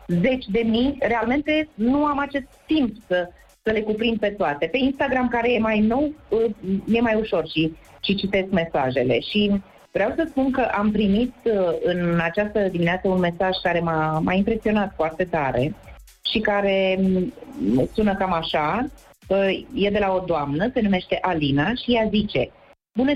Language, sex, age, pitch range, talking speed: Romanian, female, 30-49, 180-235 Hz, 160 wpm